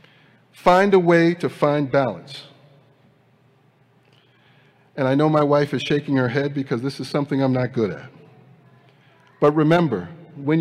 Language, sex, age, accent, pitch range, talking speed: English, male, 50-69, American, 135-155 Hz, 145 wpm